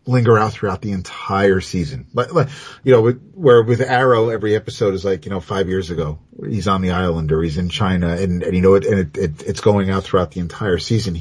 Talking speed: 245 wpm